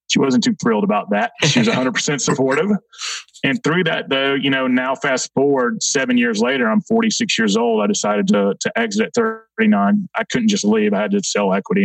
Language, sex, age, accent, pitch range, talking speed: English, male, 30-49, American, 200-230 Hz, 215 wpm